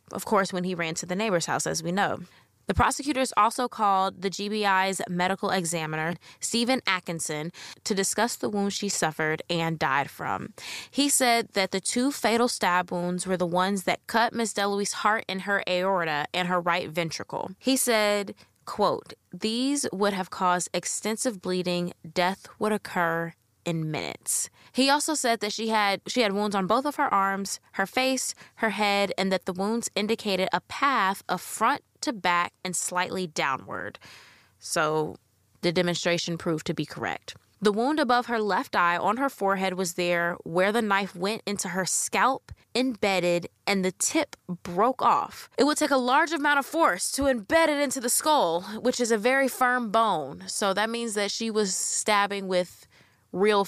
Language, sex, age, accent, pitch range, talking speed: English, female, 20-39, American, 180-230 Hz, 180 wpm